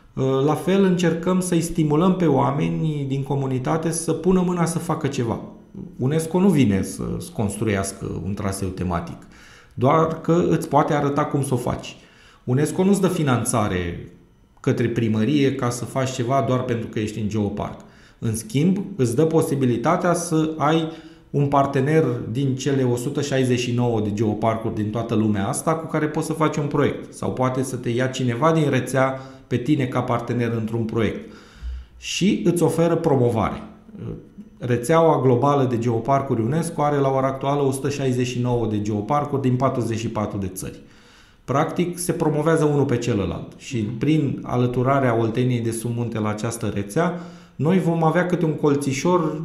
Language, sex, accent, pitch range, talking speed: Romanian, male, native, 115-160 Hz, 155 wpm